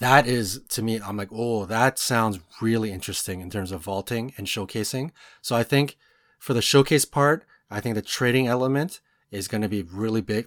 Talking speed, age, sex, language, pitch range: 200 wpm, 30-49, male, English, 105-130 Hz